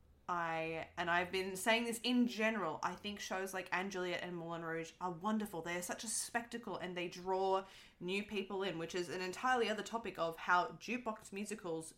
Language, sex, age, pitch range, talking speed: English, female, 20-39, 170-215 Hz, 190 wpm